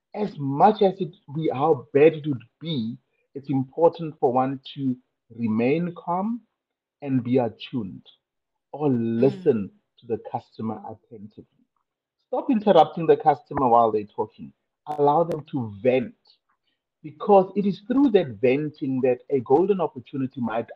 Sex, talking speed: male, 140 wpm